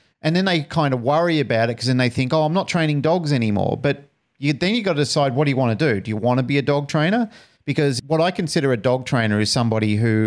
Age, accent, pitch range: 40-59, Australian, 110-140 Hz